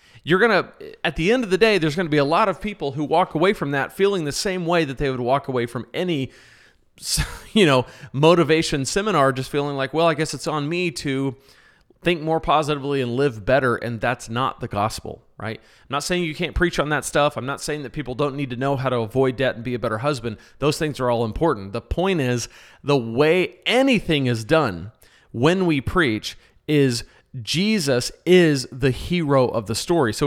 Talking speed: 220 wpm